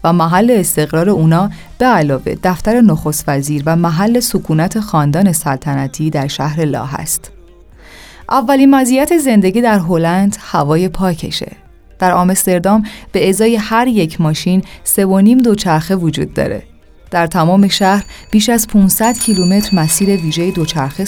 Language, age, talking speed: Persian, 30-49, 130 wpm